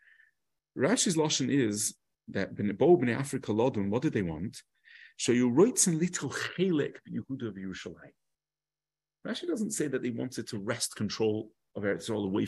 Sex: male